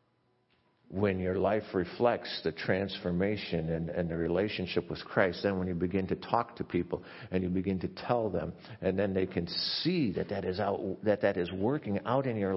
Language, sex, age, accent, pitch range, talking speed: English, male, 50-69, American, 95-135 Hz, 200 wpm